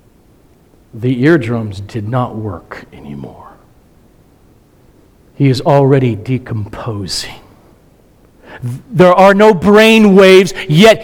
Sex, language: male, English